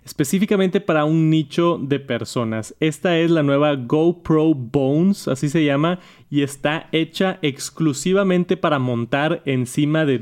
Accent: Mexican